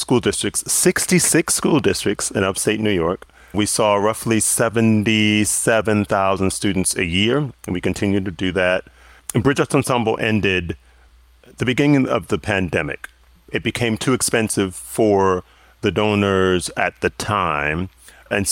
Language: English